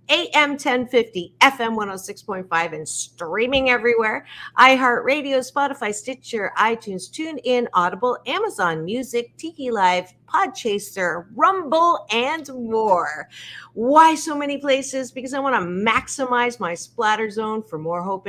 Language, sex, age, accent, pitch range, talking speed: English, female, 50-69, American, 195-275 Hz, 120 wpm